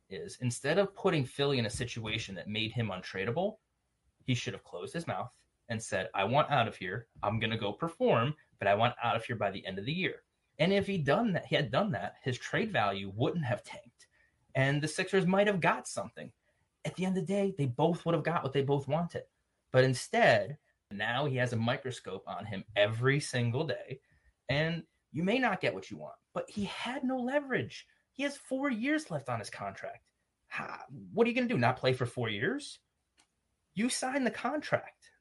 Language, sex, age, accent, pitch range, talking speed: English, male, 30-49, American, 115-175 Hz, 205 wpm